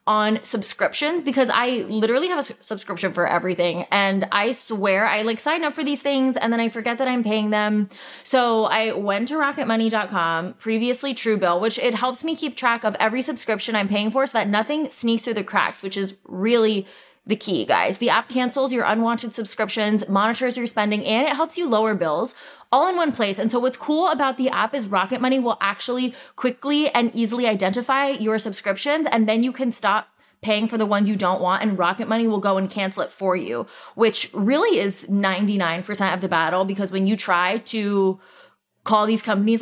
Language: English